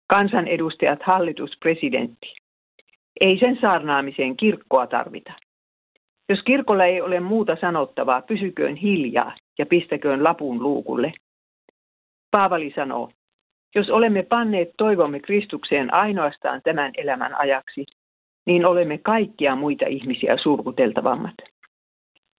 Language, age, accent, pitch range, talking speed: Finnish, 50-69, native, 150-205 Hz, 100 wpm